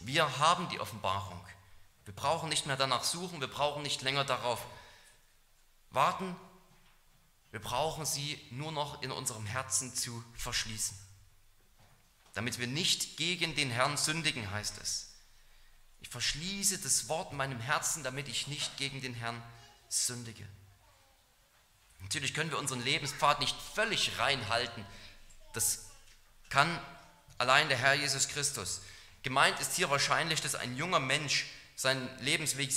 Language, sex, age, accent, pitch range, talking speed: German, male, 30-49, German, 115-155 Hz, 135 wpm